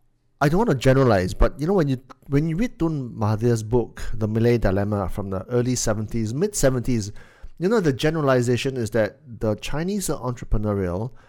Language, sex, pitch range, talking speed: English, male, 115-145 Hz, 180 wpm